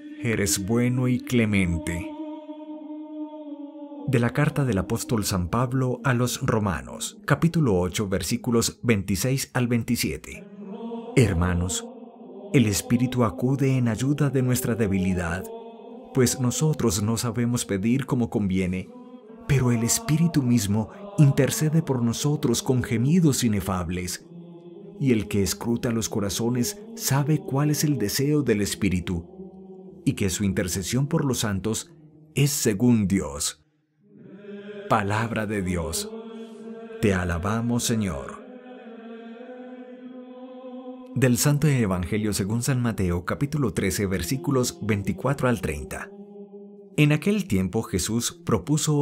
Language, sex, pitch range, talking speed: English, male, 110-175 Hz, 115 wpm